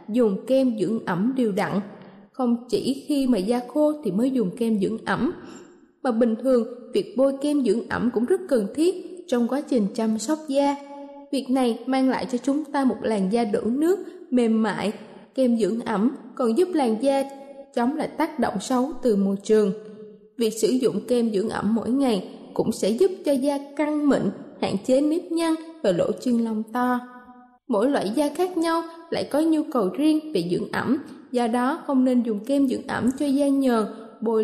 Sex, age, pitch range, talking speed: female, 20-39, 220-285 Hz, 200 wpm